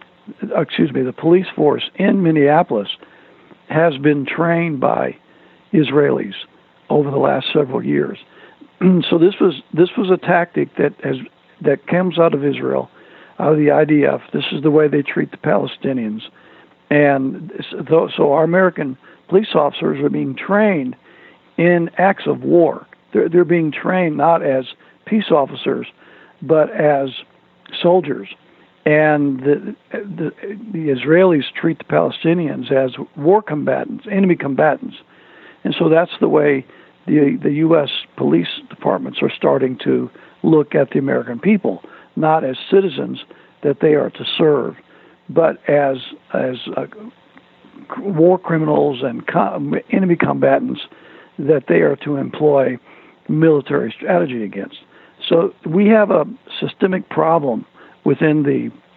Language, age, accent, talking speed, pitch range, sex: English, 60-79, American, 135 wpm, 145-185 Hz, male